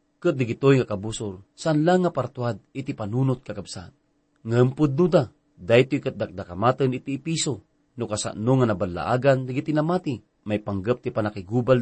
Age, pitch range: 40-59, 105-145 Hz